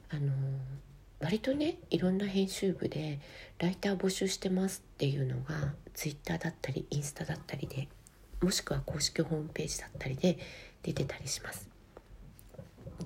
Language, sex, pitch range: Japanese, female, 135-185 Hz